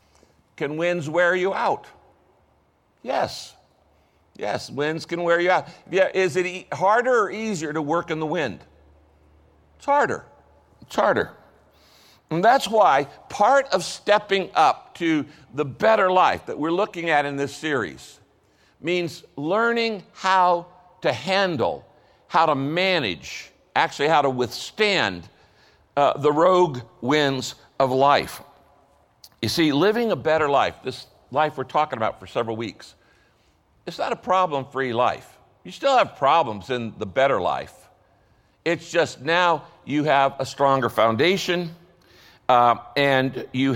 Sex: male